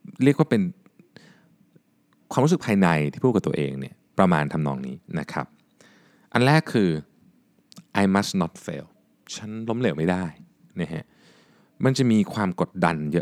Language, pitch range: Thai, 95-145 Hz